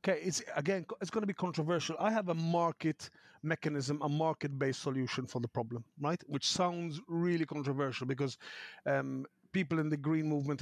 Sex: male